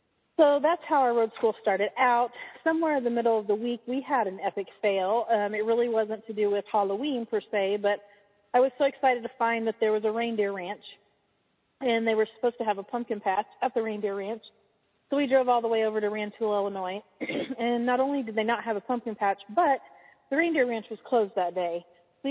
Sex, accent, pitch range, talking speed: female, American, 195-240 Hz, 230 wpm